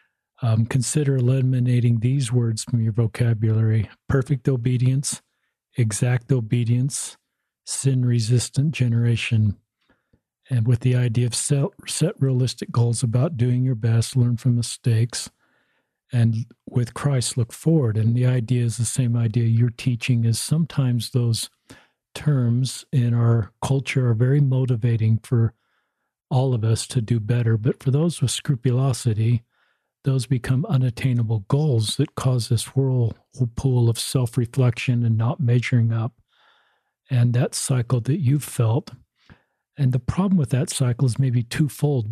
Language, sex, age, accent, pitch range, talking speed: English, male, 50-69, American, 120-135 Hz, 135 wpm